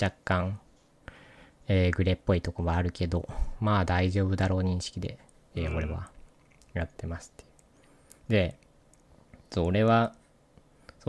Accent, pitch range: native, 90-115 Hz